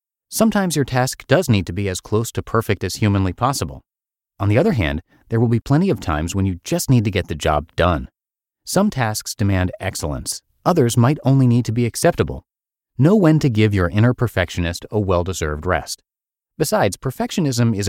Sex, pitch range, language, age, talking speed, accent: male, 95-130 Hz, English, 30-49, 190 wpm, American